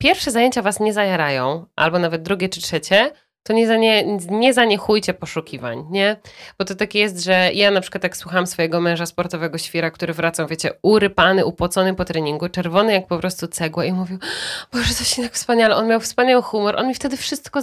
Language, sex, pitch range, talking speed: Polish, female, 180-240 Hz, 205 wpm